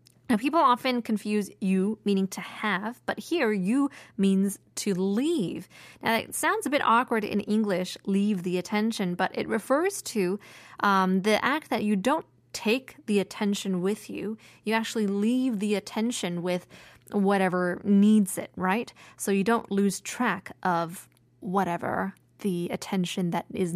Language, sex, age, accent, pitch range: Korean, female, 20-39, American, 190-230 Hz